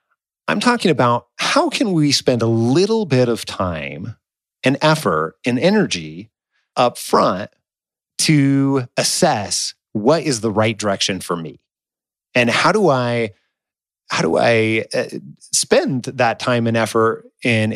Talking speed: 135 wpm